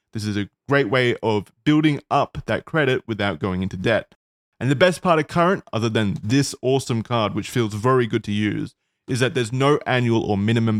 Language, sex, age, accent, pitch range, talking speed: English, male, 20-39, Australian, 105-140 Hz, 210 wpm